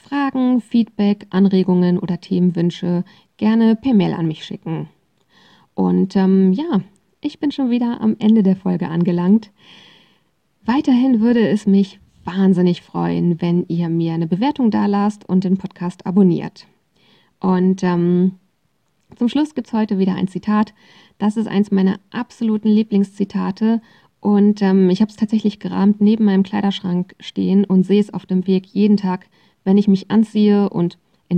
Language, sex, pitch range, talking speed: German, female, 185-215 Hz, 155 wpm